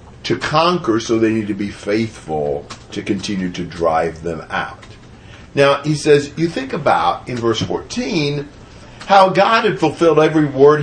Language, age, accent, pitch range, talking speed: English, 50-69, American, 110-155 Hz, 160 wpm